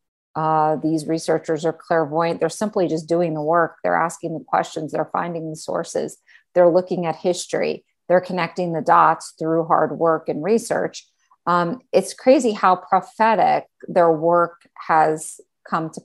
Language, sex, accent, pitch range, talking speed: English, female, American, 165-200 Hz, 155 wpm